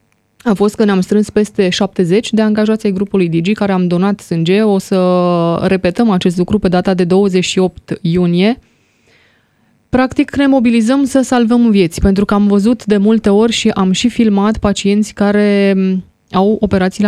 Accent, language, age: native, Romanian, 20-39